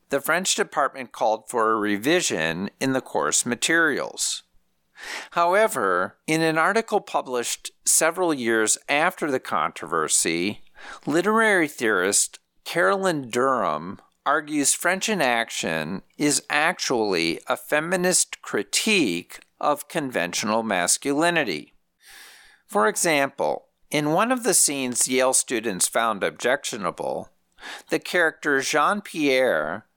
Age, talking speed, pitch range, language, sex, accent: 50-69, 100 wpm, 130-185 Hz, English, male, American